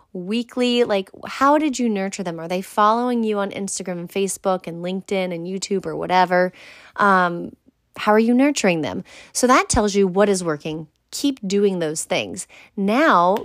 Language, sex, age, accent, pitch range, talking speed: English, female, 30-49, American, 180-225 Hz, 175 wpm